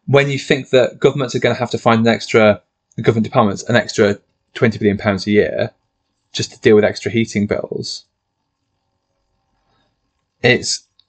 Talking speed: 160 wpm